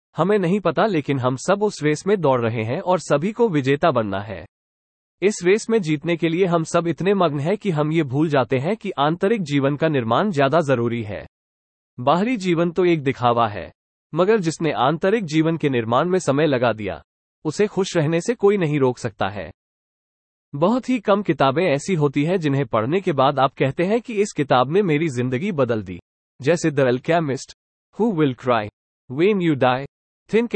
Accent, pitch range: Indian, 125-185 Hz